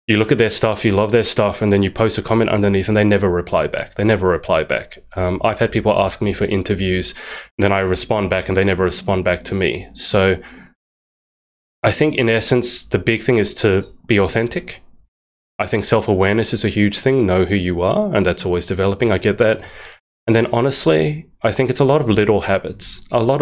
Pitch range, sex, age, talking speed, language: 95-110 Hz, male, 20-39, 225 wpm, English